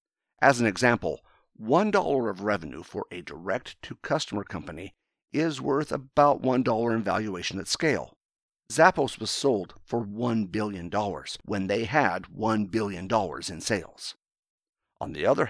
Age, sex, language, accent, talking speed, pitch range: 50-69, male, English, American, 155 wpm, 95-120 Hz